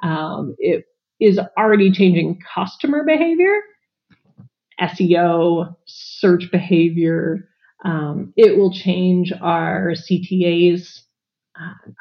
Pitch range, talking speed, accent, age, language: 175-200 Hz, 85 wpm, American, 30-49, English